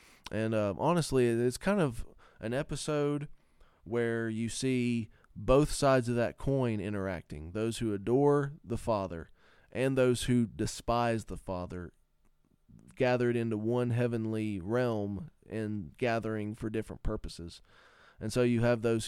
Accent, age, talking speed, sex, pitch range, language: American, 20-39, 135 wpm, male, 105-125 Hz, English